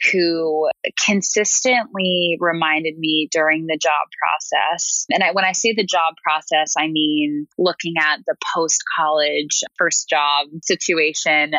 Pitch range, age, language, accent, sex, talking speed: 155-205 Hz, 20-39, English, American, female, 125 wpm